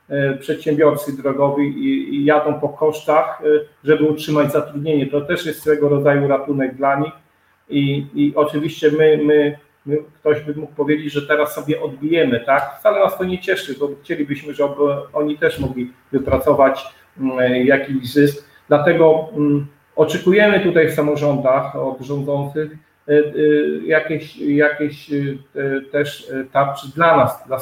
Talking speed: 130 wpm